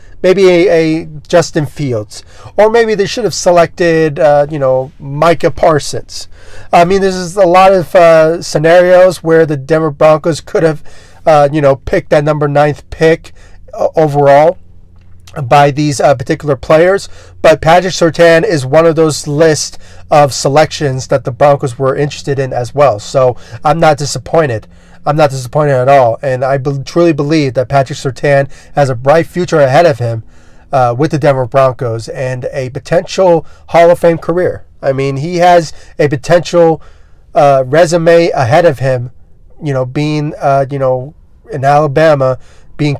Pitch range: 130-160 Hz